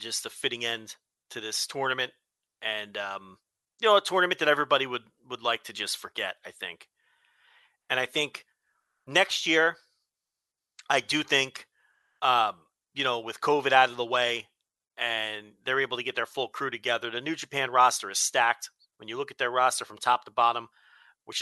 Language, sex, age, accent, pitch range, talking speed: English, male, 30-49, American, 120-140 Hz, 185 wpm